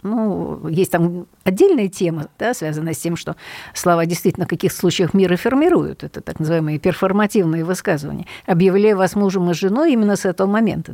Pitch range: 165-210 Hz